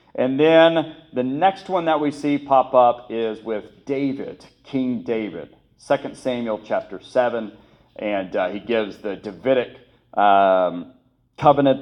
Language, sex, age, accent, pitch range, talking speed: English, male, 40-59, American, 110-150 Hz, 135 wpm